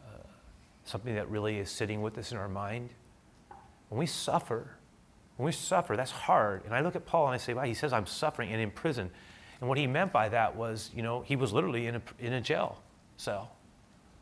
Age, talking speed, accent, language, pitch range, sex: 30-49, 225 wpm, American, English, 110-150 Hz, male